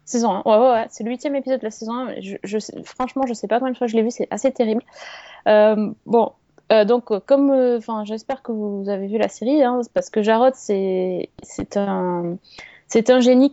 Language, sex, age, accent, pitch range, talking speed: French, female, 20-39, French, 195-240 Hz, 235 wpm